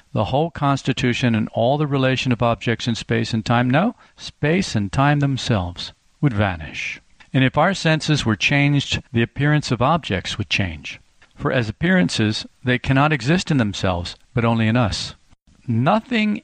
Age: 50-69